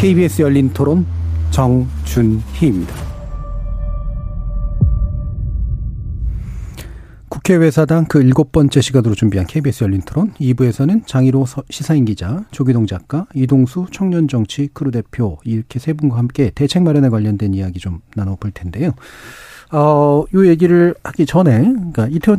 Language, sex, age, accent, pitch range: Korean, male, 40-59, native, 110-150 Hz